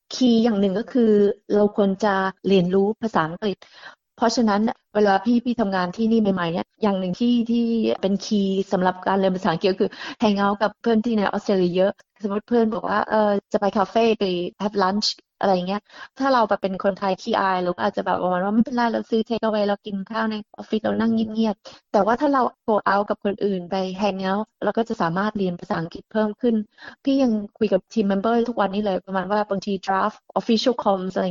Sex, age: female, 20-39